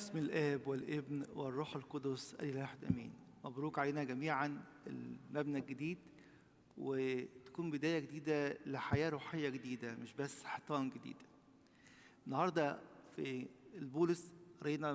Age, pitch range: 50-69, 140-165 Hz